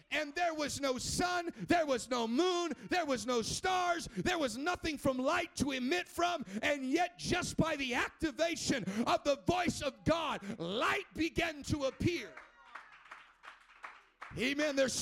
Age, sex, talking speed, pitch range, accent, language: 50-69, male, 150 wpm, 250-320 Hz, American, English